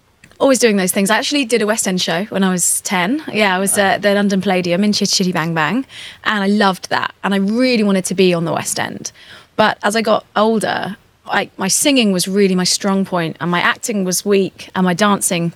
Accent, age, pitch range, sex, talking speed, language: British, 20-39, 175-210 Hz, female, 240 wpm, English